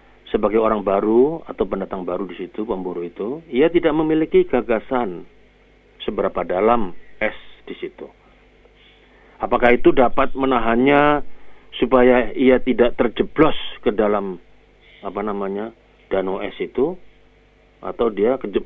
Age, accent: 50-69, native